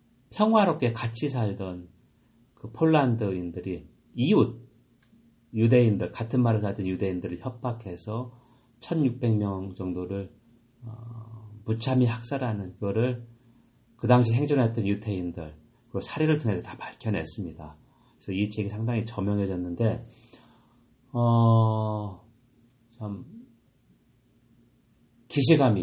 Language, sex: Korean, male